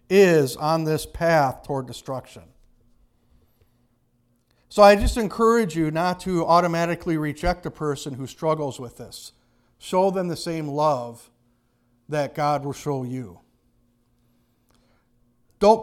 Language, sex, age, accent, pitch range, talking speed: English, male, 50-69, American, 120-165 Hz, 120 wpm